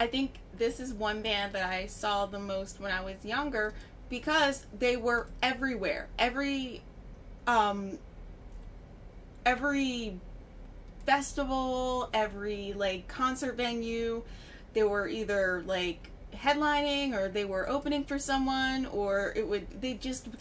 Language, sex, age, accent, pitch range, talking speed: English, female, 20-39, American, 195-250 Hz, 125 wpm